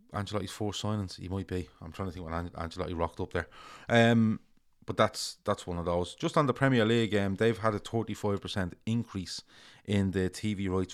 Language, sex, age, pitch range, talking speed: English, male, 30-49, 85-100 Hz, 225 wpm